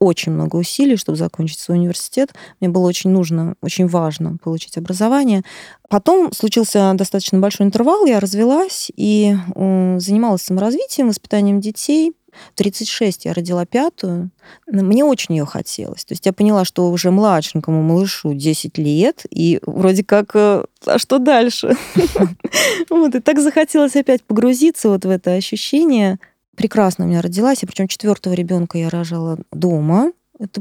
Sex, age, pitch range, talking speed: female, 20-39, 180-225 Hz, 145 wpm